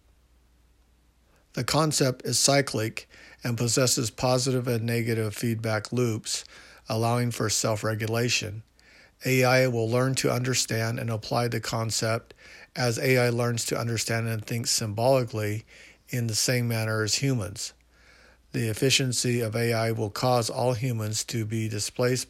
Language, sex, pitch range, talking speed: English, male, 110-125 Hz, 130 wpm